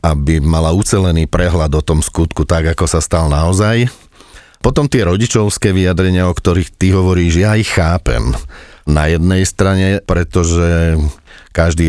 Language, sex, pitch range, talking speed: Slovak, male, 75-95 Hz, 140 wpm